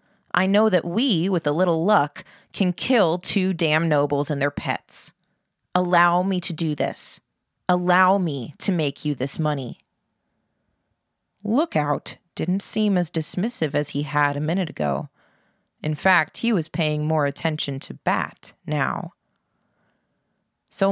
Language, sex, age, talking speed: English, female, 20-39, 145 wpm